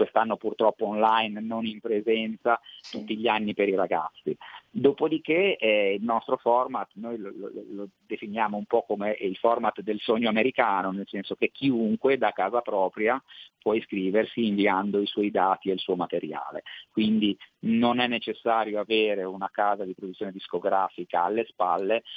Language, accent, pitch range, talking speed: Italian, native, 100-115 Hz, 160 wpm